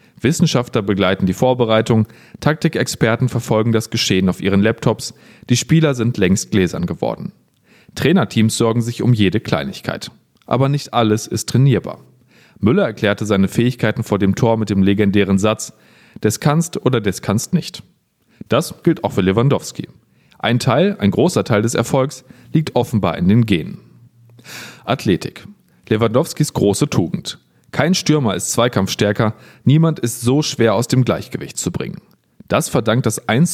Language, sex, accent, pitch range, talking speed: German, male, German, 105-130 Hz, 150 wpm